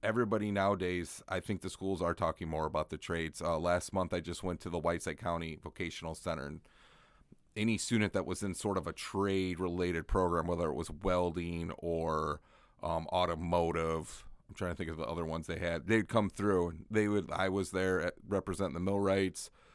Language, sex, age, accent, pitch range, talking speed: English, male, 30-49, American, 85-100 Hz, 200 wpm